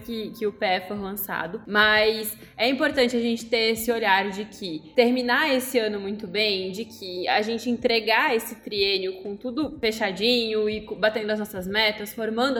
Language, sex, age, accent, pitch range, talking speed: Portuguese, female, 10-29, Brazilian, 210-245 Hz, 175 wpm